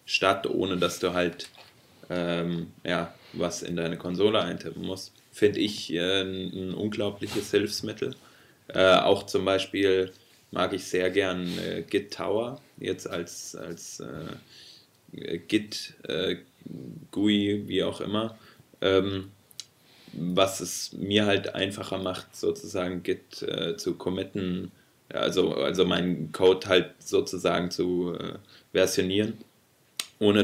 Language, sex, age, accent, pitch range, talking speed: German, male, 20-39, German, 90-100 Hz, 120 wpm